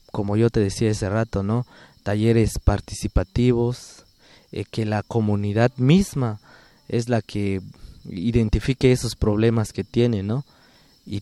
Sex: male